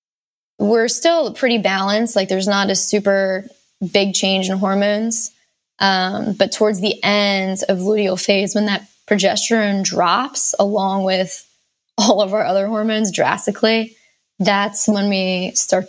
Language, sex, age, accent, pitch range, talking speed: English, female, 20-39, American, 190-215 Hz, 140 wpm